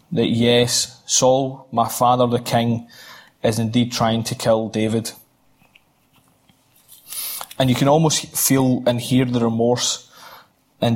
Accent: British